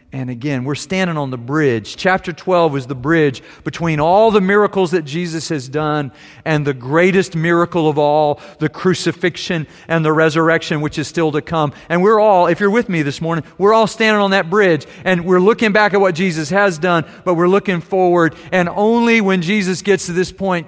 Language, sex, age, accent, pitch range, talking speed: English, male, 40-59, American, 160-195 Hz, 210 wpm